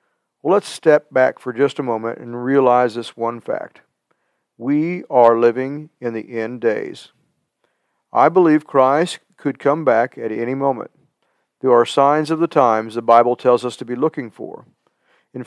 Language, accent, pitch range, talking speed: English, American, 120-160 Hz, 170 wpm